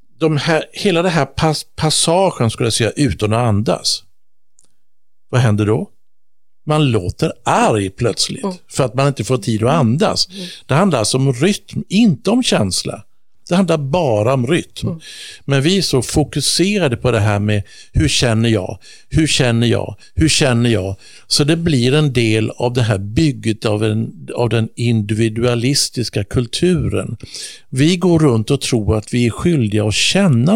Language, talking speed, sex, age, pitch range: English, 165 wpm, male, 60-79, 110-155 Hz